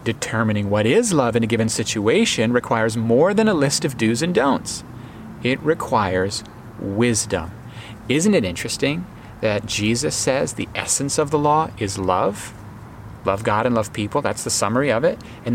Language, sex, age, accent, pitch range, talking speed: English, male, 40-59, American, 110-140 Hz, 170 wpm